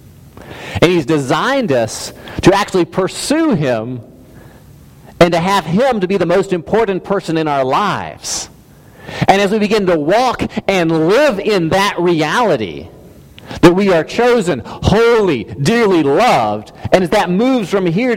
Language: English